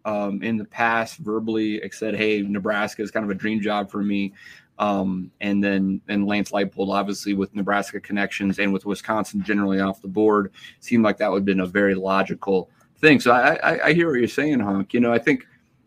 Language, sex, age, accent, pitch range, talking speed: English, male, 30-49, American, 100-115 Hz, 210 wpm